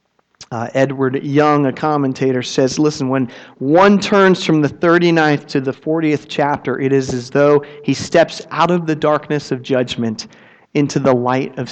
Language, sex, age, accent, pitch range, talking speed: English, male, 40-59, American, 130-170 Hz, 170 wpm